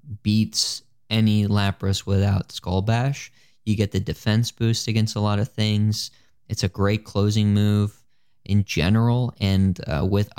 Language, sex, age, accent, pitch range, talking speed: English, male, 20-39, American, 100-120 Hz, 150 wpm